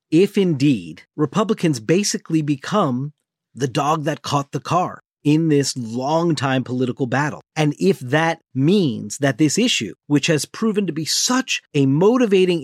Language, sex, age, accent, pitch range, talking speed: English, male, 40-59, American, 125-165 Hz, 145 wpm